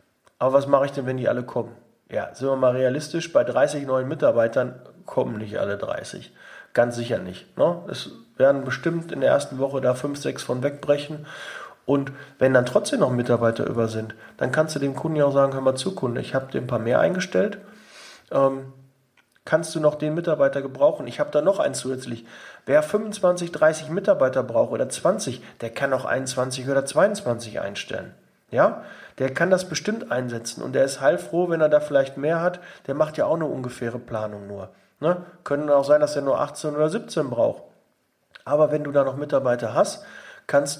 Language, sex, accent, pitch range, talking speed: German, male, German, 135-170 Hz, 195 wpm